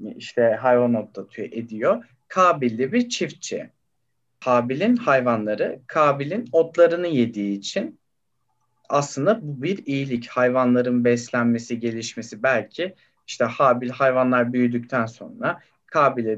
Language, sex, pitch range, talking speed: Turkish, male, 120-150 Hz, 100 wpm